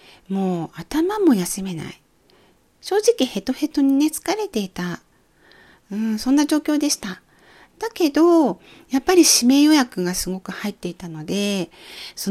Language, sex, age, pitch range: Japanese, female, 40-59, 185-280 Hz